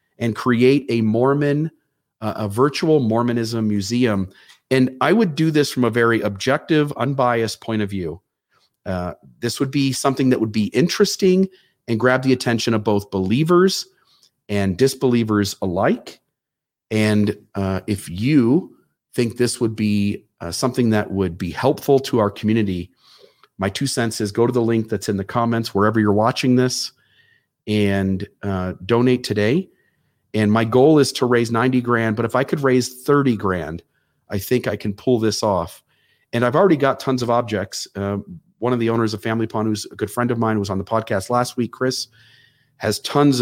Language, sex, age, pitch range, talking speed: English, male, 40-59, 105-130 Hz, 180 wpm